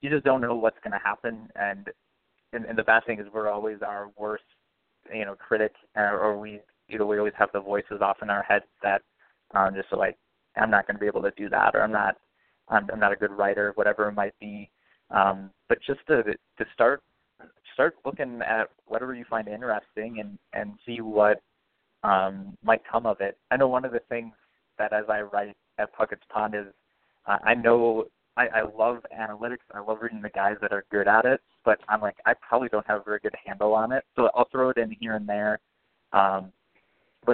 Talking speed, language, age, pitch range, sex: 220 wpm, English, 20-39, 100-110 Hz, male